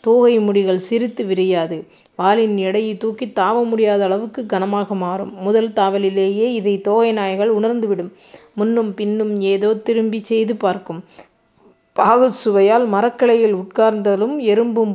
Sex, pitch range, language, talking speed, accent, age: female, 200-230 Hz, Tamil, 115 wpm, native, 20-39